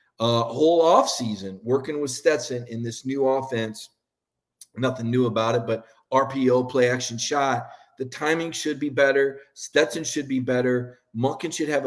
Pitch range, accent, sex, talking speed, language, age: 125-165 Hz, American, male, 155 wpm, English, 40-59